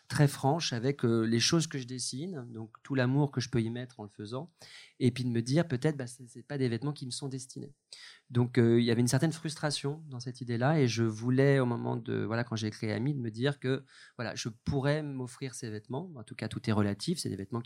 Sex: male